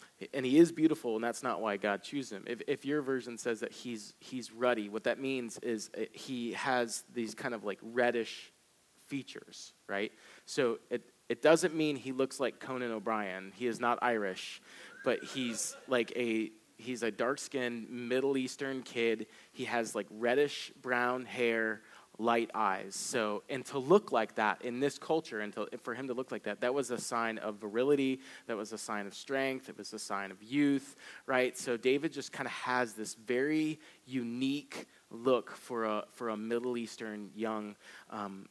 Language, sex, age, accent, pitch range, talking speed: English, male, 30-49, American, 110-130 Hz, 185 wpm